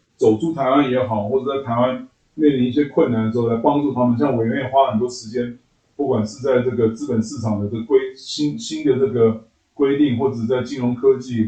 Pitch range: 110-135 Hz